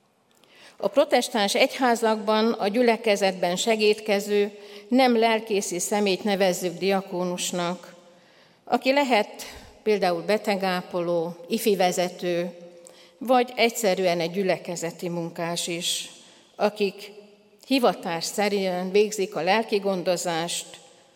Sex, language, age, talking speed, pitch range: female, Hungarian, 60-79, 80 wpm, 170-205 Hz